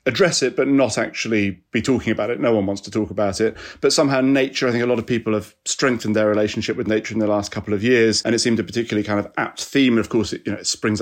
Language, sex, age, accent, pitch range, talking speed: English, male, 30-49, British, 110-130 Hz, 290 wpm